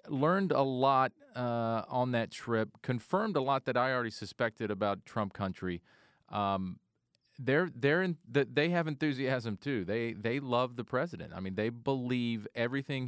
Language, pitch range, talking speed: English, 105-130 Hz, 155 wpm